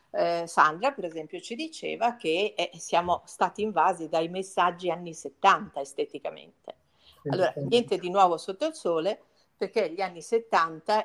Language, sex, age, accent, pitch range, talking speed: Italian, female, 50-69, native, 175-235 Hz, 140 wpm